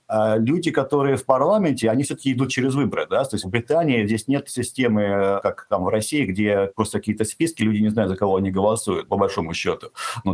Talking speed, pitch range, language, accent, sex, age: 210 wpm, 105-125 Hz, Russian, native, male, 50-69